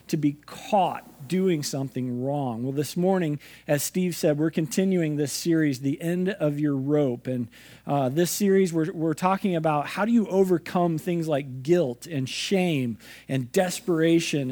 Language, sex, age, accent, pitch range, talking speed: English, male, 40-59, American, 140-190 Hz, 165 wpm